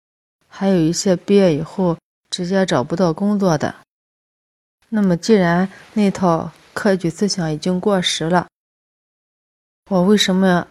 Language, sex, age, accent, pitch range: Chinese, female, 30-49, native, 155-190 Hz